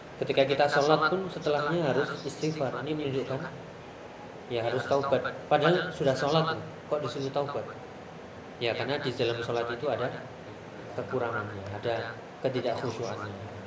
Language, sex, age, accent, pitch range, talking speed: Indonesian, male, 20-39, native, 115-145 Hz, 125 wpm